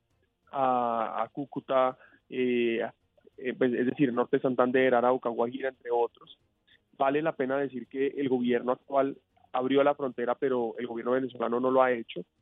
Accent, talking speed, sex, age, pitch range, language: Colombian, 160 wpm, male, 20-39, 120-140 Hz, Spanish